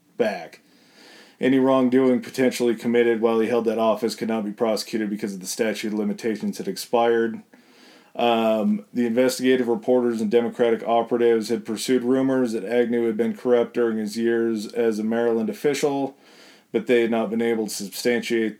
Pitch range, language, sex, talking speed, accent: 115-130 Hz, English, male, 165 wpm, American